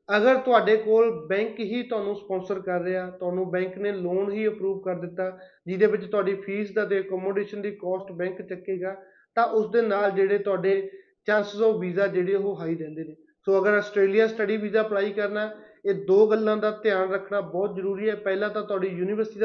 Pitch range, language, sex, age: 190-215 Hz, Punjabi, male, 20-39